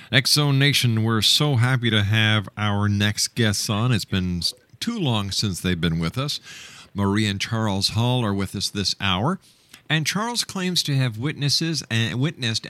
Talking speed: 165 wpm